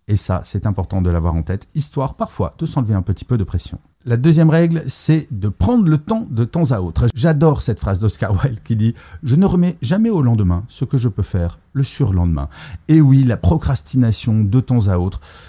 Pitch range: 95-135 Hz